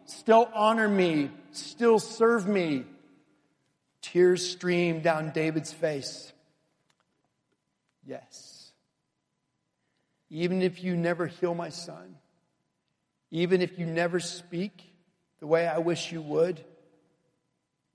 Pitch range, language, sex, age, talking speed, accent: 145-175 Hz, English, male, 50-69, 100 wpm, American